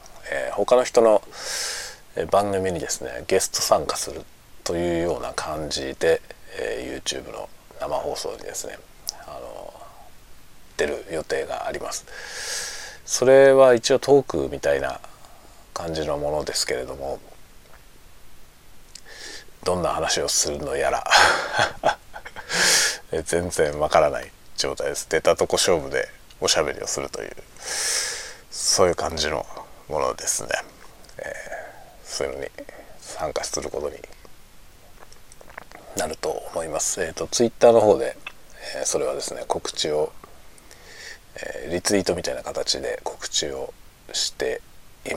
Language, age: Japanese, 40-59